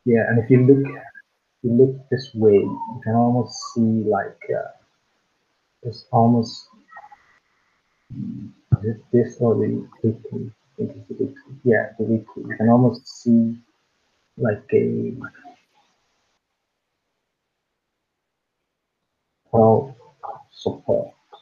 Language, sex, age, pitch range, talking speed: English, male, 50-69, 115-140 Hz, 90 wpm